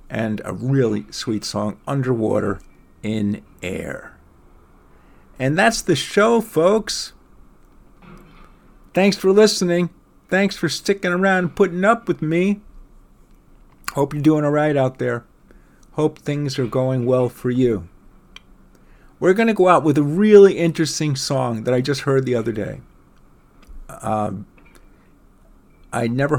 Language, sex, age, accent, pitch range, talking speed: English, male, 50-69, American, 115-155 Hz, 135 wpm